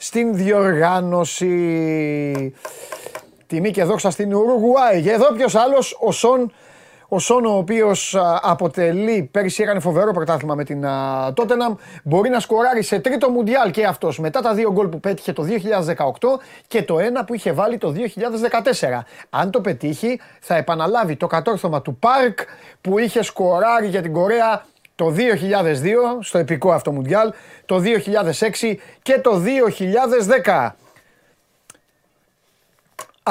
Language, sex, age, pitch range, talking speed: Greek, male, 30-49, 165-235 Hz, 135 wpm